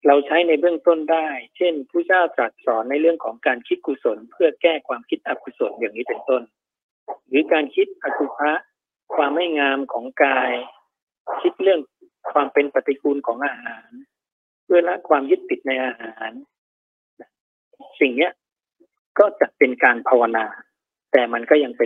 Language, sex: Thai, male